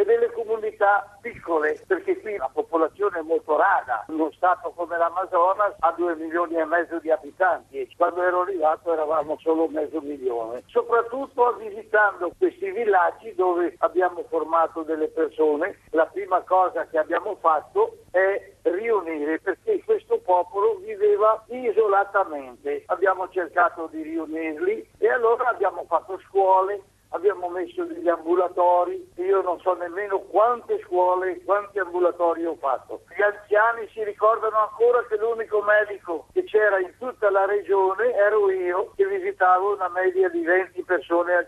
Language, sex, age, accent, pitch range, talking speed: Italian, male, 60-79, native, 170-245 Hz, 145 wpm